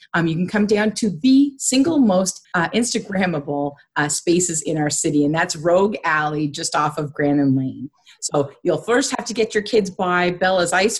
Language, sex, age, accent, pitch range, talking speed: English, female, 30-49, American, 150-200 Hz, 195 wpm